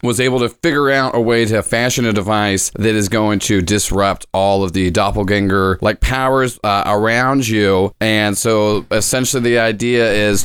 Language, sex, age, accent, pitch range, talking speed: English, male, 30-49, American, 100-115 Hz, 180 wpm